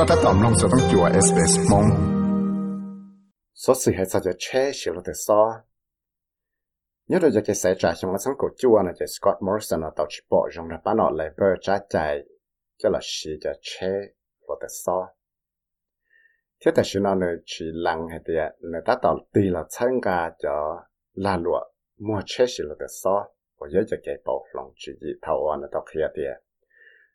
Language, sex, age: English, male, 50-69